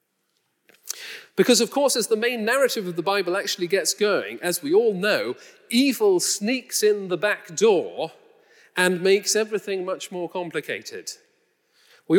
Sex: male